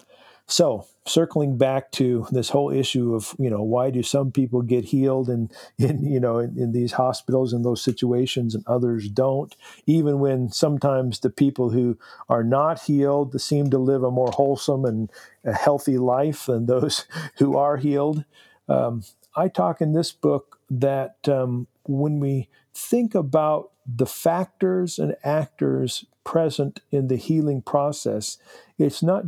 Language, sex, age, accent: English, male, 50-69, American